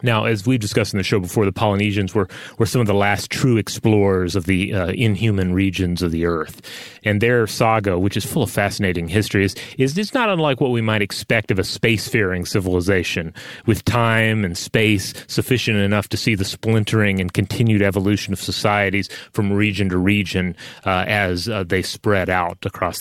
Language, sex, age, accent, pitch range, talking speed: English, male, 30-49, American, 95-115 Hz, 195 wpm